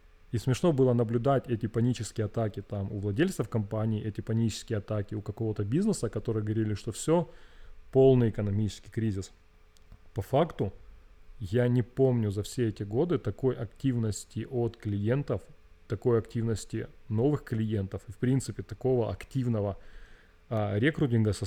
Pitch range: 100-125 Hz